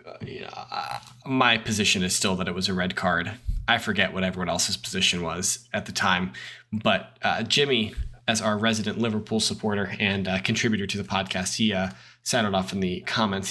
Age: 20-39